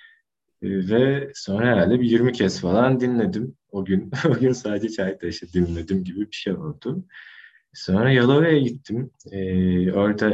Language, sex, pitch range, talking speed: Turkish, male, 90-120 Hz, 140 wpm